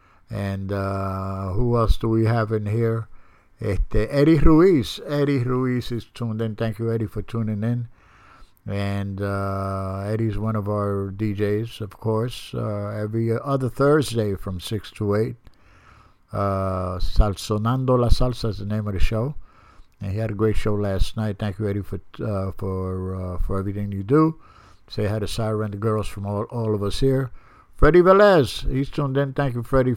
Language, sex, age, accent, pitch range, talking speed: English, male, 60-79, American, 100-120 Hz, 180 wpm